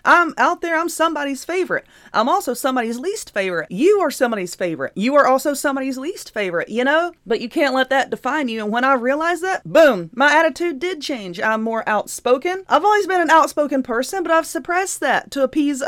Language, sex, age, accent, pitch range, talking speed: English, female, 30-49, American, 205-265 Hz, 210 wpm